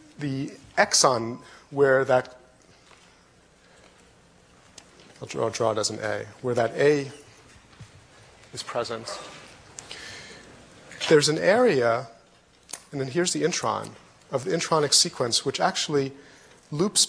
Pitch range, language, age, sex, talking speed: 120-145 Hz, English, 30-49, male, 110 wpm